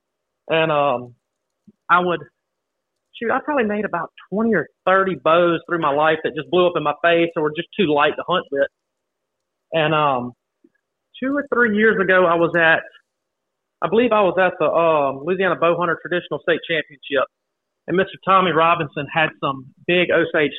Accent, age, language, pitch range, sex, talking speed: American, 30-49, English, 145-180 Hz, male, 180 wpm